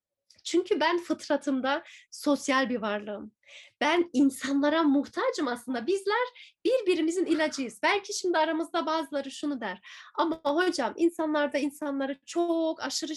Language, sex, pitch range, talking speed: Turkish, female, 270-345 Hz, 115 wpm